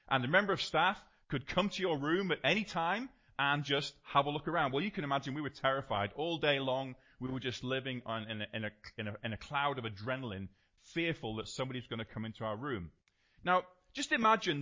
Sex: male